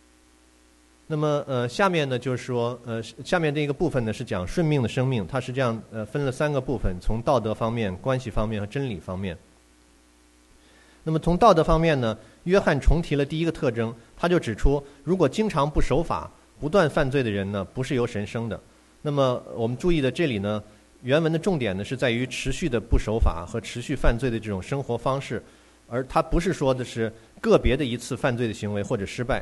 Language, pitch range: English, 110-150 Hz